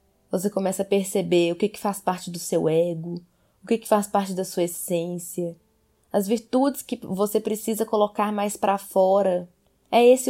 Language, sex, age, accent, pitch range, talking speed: Portuguese, female, 20-39, Brazilian, 175-215 Hz, 180 wpm